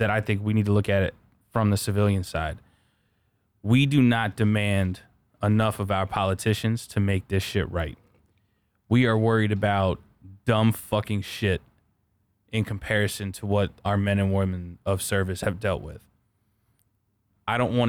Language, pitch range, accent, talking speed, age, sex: English, 100-110 Hz, American, 165 wpm, 20-39, male